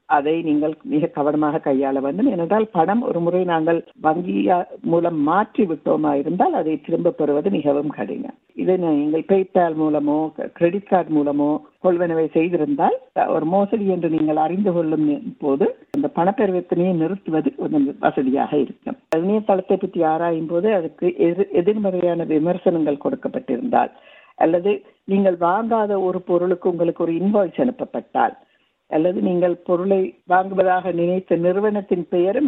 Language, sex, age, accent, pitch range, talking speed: Tamil, female, 60-79, native, 160-200 Hz, 125 wpm